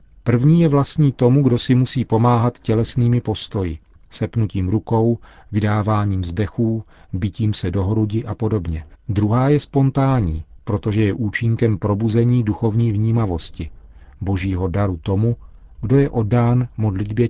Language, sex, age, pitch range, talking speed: Czech, male, 40-59, 90-120 Hz, 125 wpm